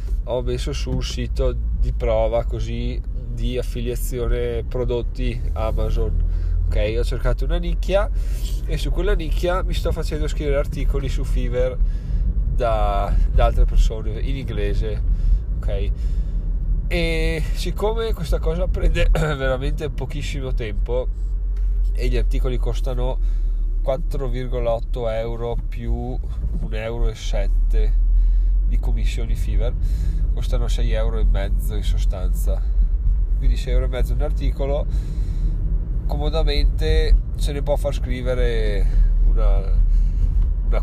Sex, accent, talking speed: male, native, 115 wpm